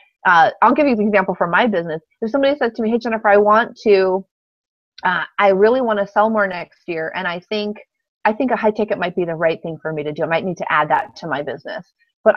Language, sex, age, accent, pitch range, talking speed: English, female, 30-49, American, 185-230 Hz, 260 wpm